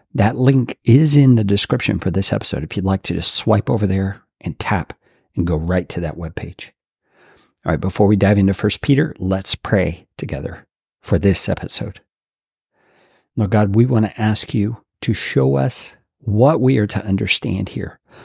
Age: 50-69